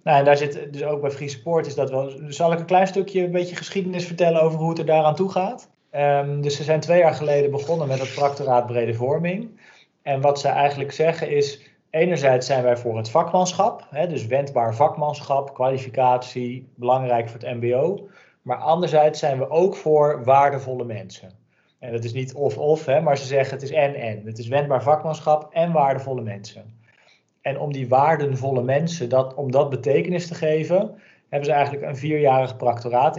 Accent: Dutch